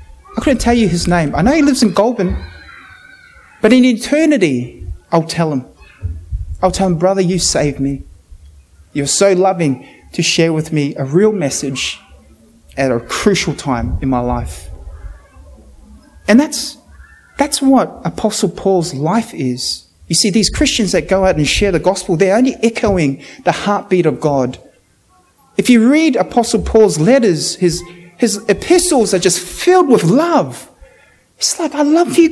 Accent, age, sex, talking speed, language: Australian, 30-49, male, 160 wpm, English